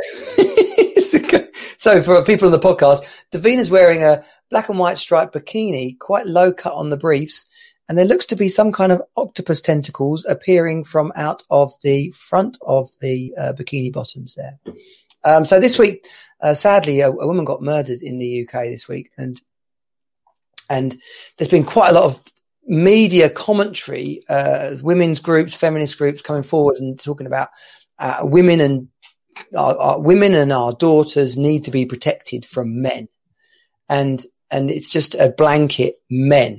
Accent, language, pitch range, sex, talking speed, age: British, English, 130-180 Hz, male, 165 wpm, 40-59